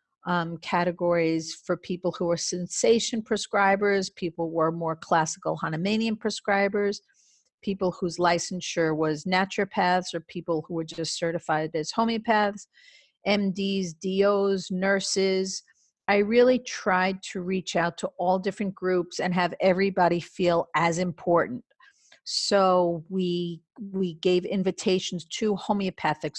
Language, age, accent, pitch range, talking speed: English, 50-69, American, 170-205 Hz, 125 wpm